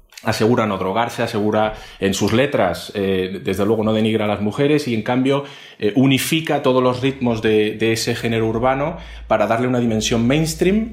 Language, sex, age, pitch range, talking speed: Spanish, male, 30-49, 105-125 Hz, 180 wpm